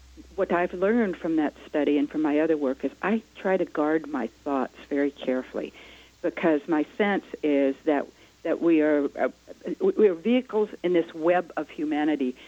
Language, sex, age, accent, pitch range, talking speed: English, female, 60-79, American, 145-210 Hz, 180 wpm